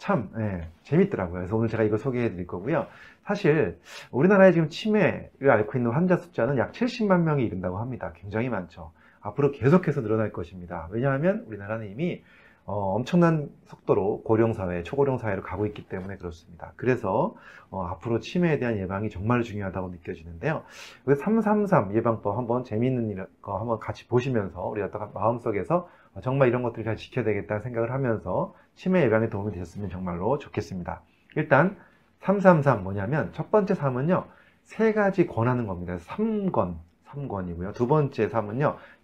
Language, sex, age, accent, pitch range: Korean, male, 30-49, native, 95-150 Hz